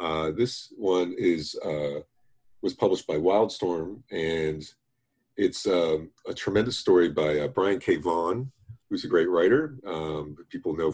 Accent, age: American, 40-59